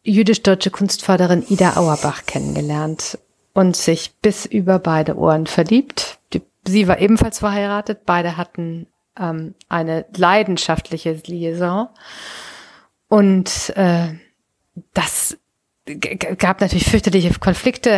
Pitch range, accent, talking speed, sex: 170-200 Hz, German, 105 wpm, female